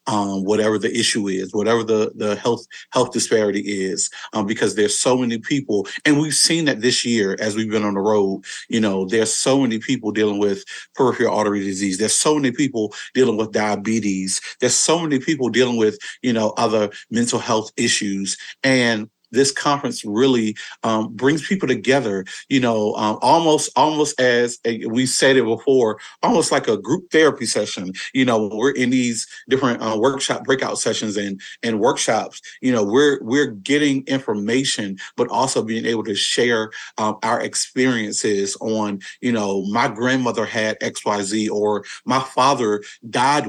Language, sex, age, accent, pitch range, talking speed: English, male, 40-59, American, 105-130 Hz, 170 wpm